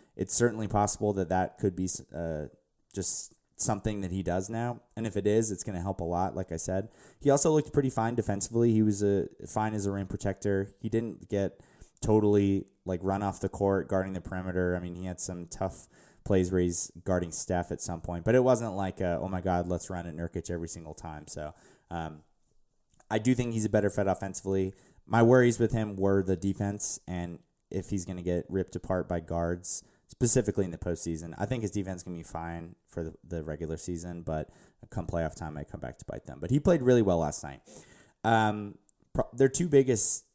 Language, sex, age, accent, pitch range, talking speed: English, male, 20-39, American, 85-110 Hz, 220 wpm